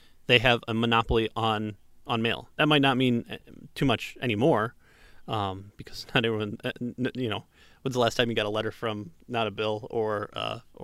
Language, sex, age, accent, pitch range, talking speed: English, male, 30-49, American, 110-135 Hz, 190 wpm